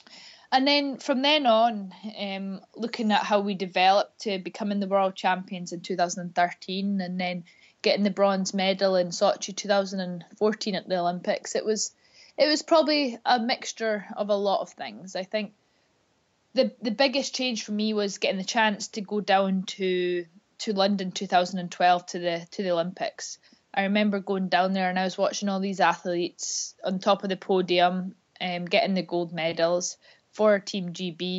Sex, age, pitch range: female, 20-39, 185-220 Hz